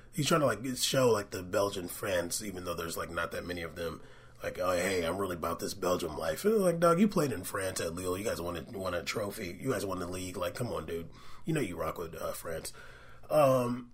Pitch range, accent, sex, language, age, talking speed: 125-180 Hz, American, male, English, 30-49, 265 wpm